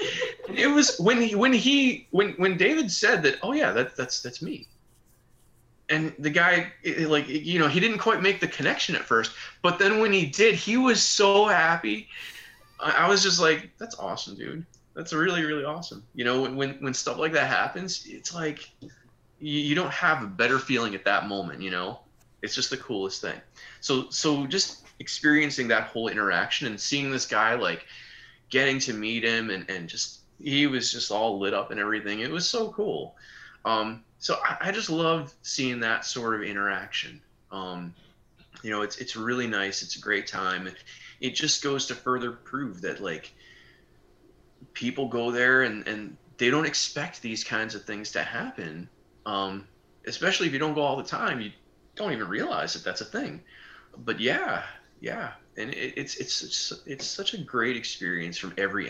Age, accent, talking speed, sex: 20-39, American, 190 wpm, male